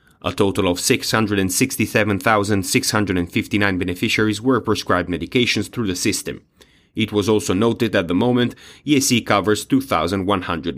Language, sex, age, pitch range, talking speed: English, male, 30-49, 100-115 Hz, 120 wpm